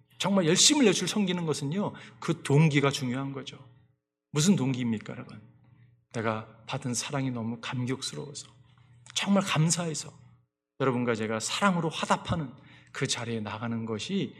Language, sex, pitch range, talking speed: English, male, 115-155 Hz, 115 wpm